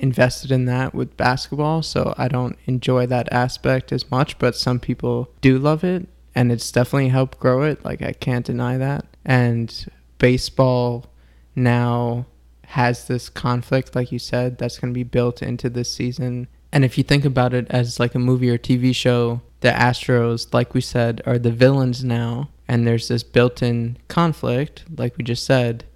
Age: 20-39